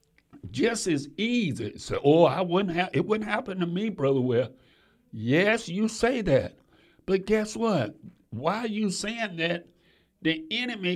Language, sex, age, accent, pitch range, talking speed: English, male, 60-79, American, 145-200 Hz, 160 wpm